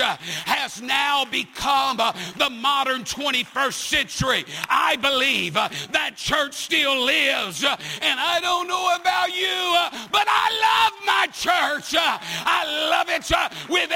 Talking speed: 120 wpm